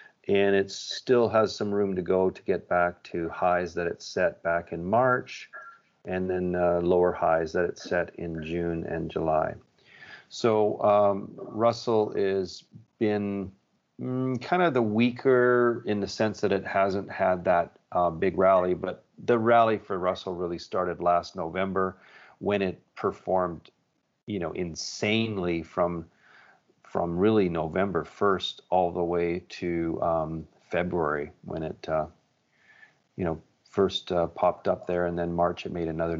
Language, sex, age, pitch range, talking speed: English, male, 40-59, 85-105 Hz, 155 wpm